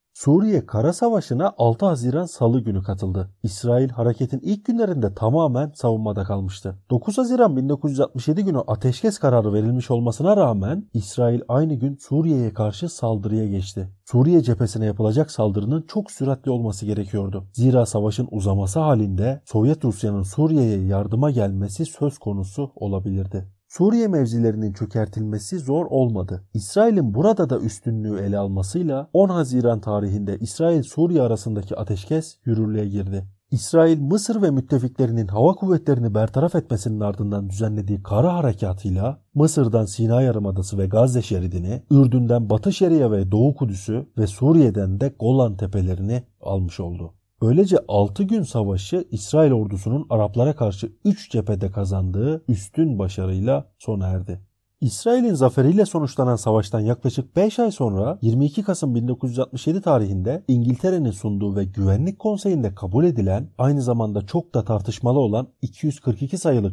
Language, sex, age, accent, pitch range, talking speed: Turkish, male, 40-59, native, 105-145 Hz, 130 wpm